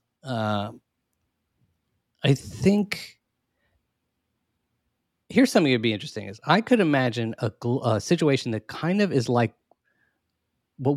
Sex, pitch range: male, 105-135 Hz